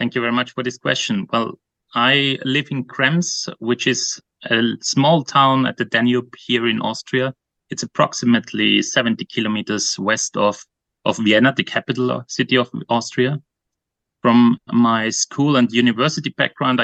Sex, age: male, 30-49